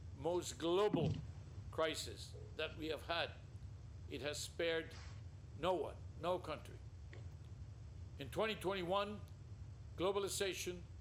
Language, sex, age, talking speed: English, male, 60-79, 95 wpm